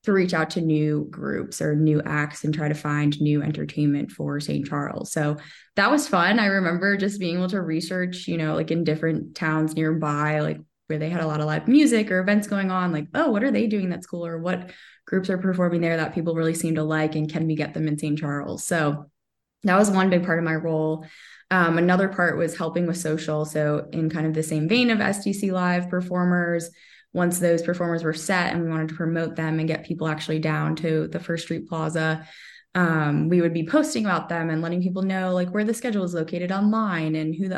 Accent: American